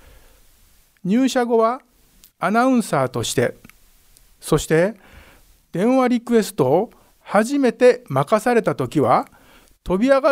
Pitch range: 145-230 Hz